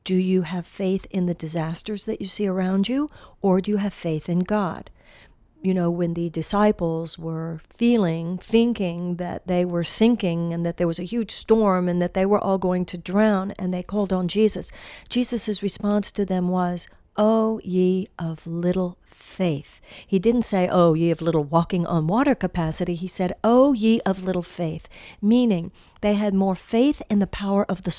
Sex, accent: female, American